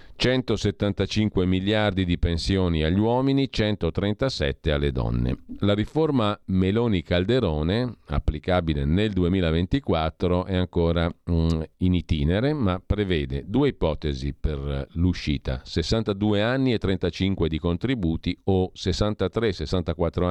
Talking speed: 100 wpm